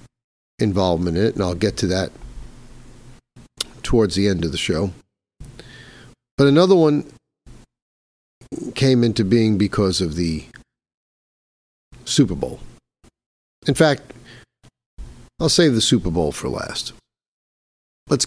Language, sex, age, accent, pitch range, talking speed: English, male, 50-69, American, 100-125 Hz, 115 wpm